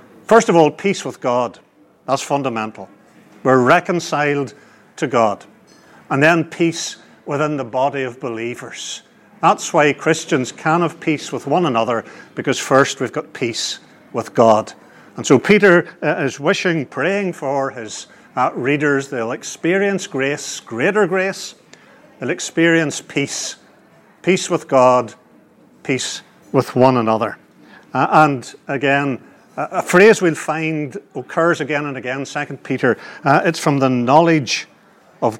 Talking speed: 135 wpm